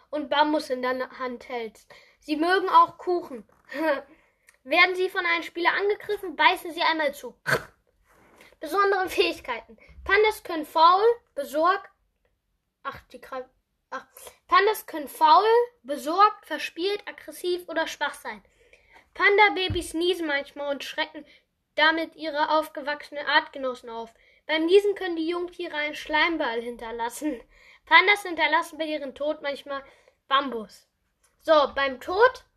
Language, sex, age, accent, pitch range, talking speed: German, female, 10-29, German, 280-350 Hz, 125 wpm